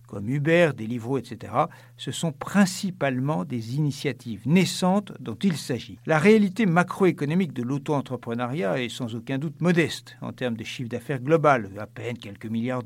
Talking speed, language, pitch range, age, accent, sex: 160 wpm, French, 125-170 Hz, 60-79, French, male